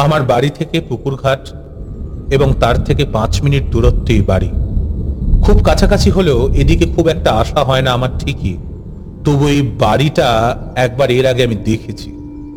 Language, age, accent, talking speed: Bengali, 40-59, native, 150 wpm